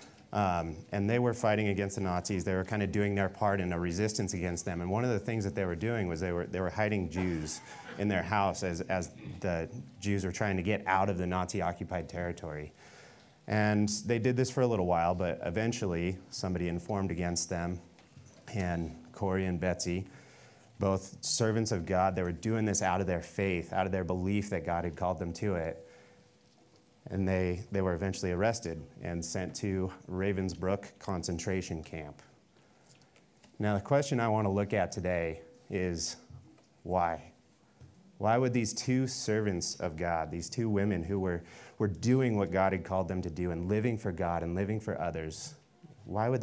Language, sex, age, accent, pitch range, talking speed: English, male, 30-49, American, 85-105 Hz, 190 wpm